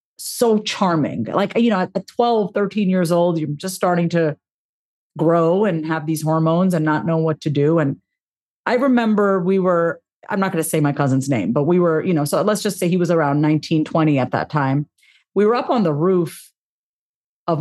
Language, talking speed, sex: English, 210 wpm, female